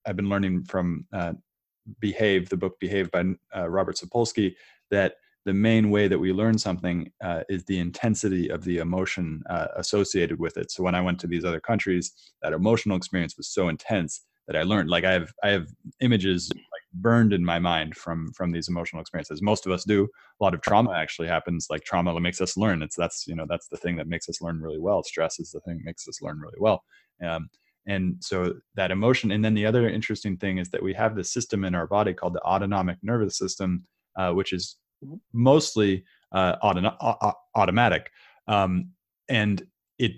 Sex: male